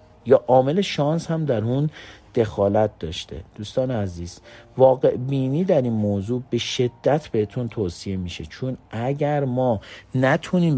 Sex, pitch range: male, 105-130 Hz